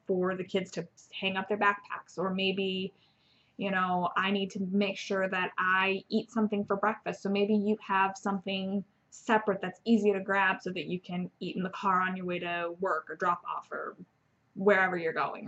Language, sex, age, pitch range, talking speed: English, female, 20-39, 185-215 Hz, 205 wpm